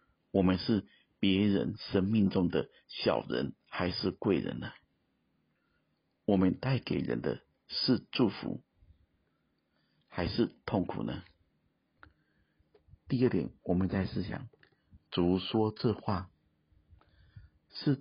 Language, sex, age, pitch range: Chinese, male, 50-69, 85-105 Hz